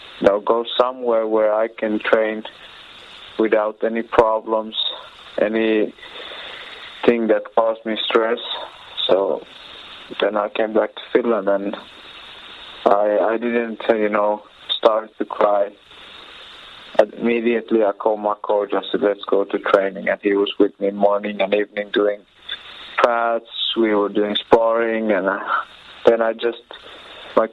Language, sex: English, male